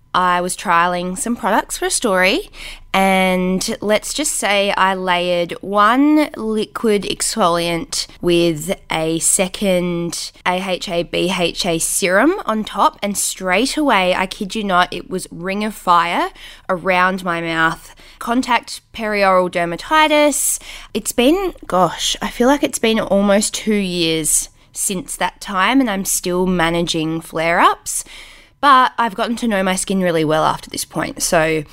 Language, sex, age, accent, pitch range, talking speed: English, female, 10-29, Australian, 170-225 Hz, 140 wpm